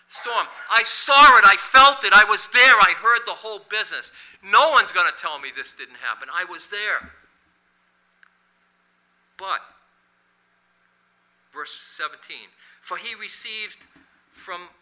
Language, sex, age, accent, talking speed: English, male, 50-69, American, 135 wpm